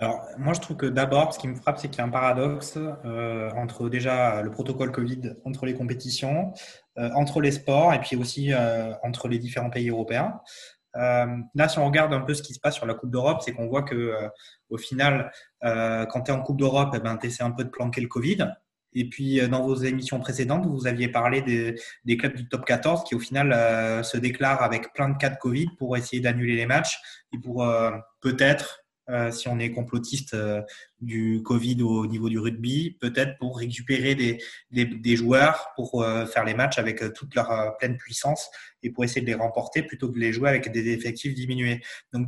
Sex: male